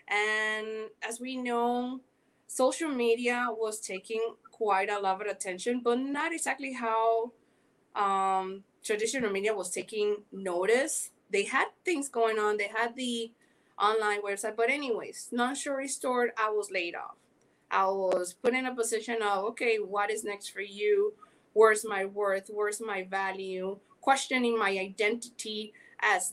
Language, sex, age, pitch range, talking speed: English, female, 20-39, 200-255 Hz, 150 wpm